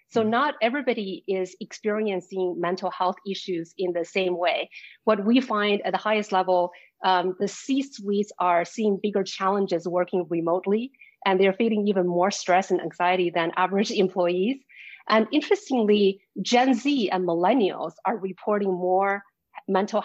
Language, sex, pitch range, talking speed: English, female, 185-220 Hz, 145 wpm